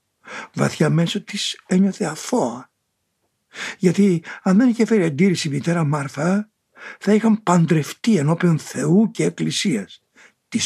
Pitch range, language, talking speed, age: 145-185 Hz, Greek, 125 wpm, 60-79